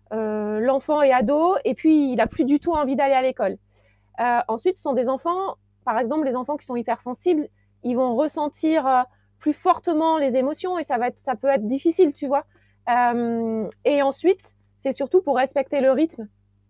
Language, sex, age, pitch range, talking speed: French, female, 30-49, 220-290 Hz, 195 wpm